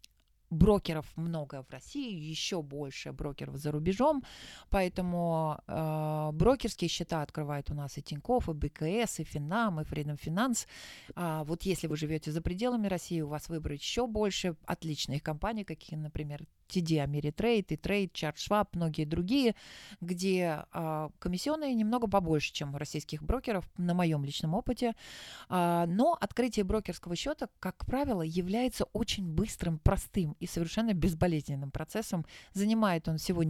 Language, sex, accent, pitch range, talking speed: Russian, female, native, 155-200 Hz, 145 wpm